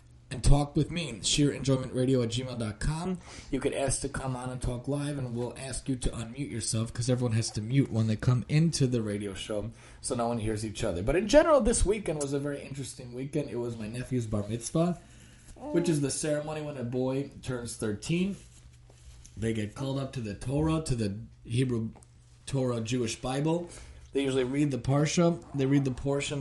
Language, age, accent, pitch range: English, 30-49, American, 115-135 Hz